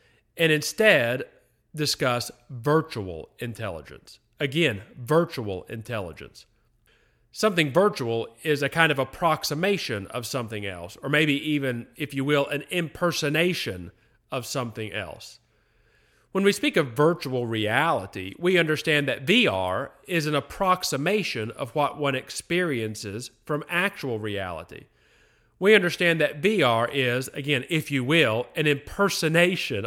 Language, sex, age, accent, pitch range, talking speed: English, male, 40-59, American, 115-165 Hz, 120 wpm